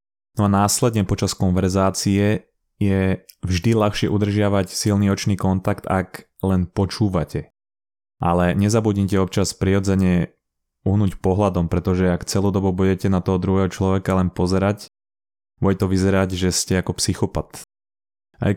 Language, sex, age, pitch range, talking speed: Slovak, male, 20-39, 90-100 Hz, 130 wpm